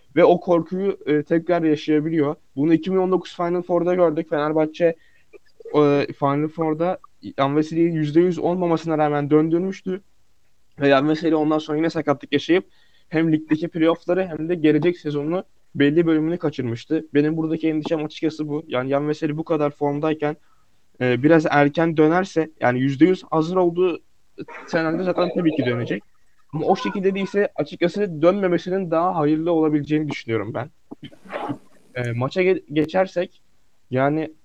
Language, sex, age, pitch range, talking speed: Turkish, male, 20-39, 150-175 Hz, 130 wpm